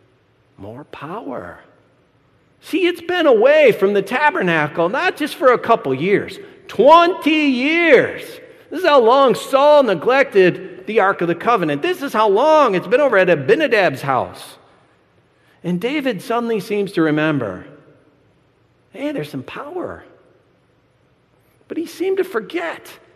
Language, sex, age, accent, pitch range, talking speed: English, male, 50-69, American, 205-335 Hz, 135 wpm